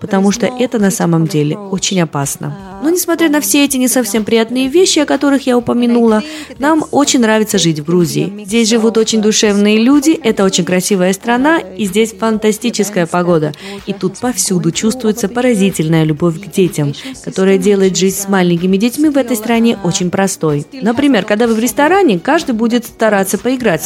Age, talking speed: 20-39, 170 wpm